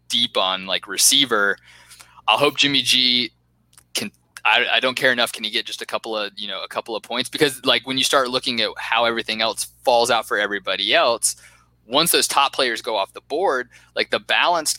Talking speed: 215 wpm